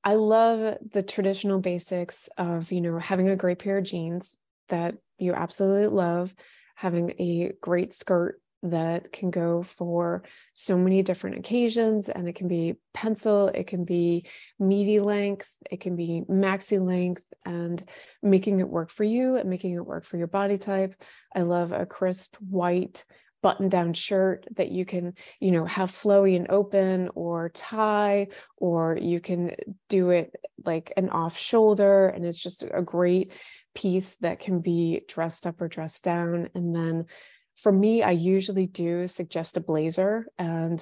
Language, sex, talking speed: English, female, 165 wpm